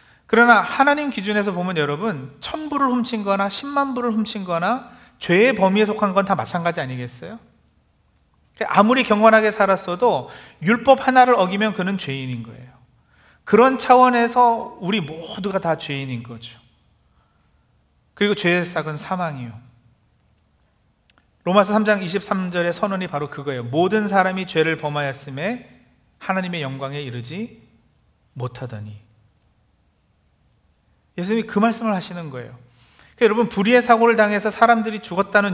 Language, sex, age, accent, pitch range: Korean, male, 40-59, native, 130-215 Hz